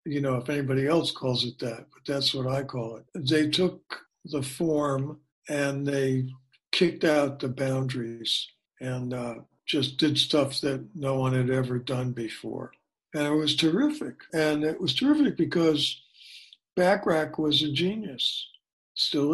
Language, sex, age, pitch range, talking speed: English, male, 60-79, 130-160 Hz, 155 wpm